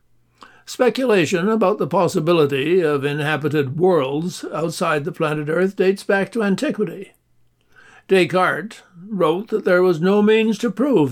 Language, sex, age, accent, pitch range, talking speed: English, male, 60-79, American, 160-195 Hz, 130 wpm